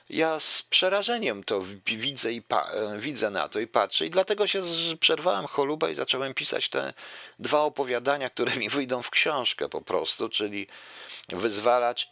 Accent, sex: native, male